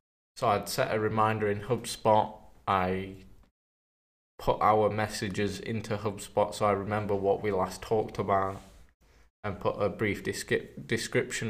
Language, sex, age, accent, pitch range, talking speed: English, male, 20-39, British, 95-110 Hz, 135 wpm